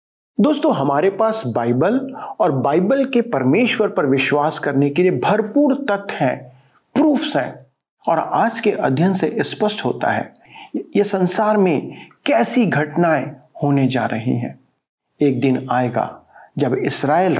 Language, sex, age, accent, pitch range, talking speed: Hindi, male, 50-69, native, 145-230 Hz, 135 wpm